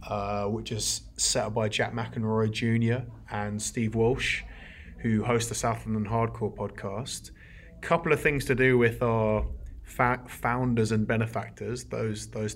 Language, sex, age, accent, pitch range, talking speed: English, male, 20-39, British, 105-115 Hz, 160 wpm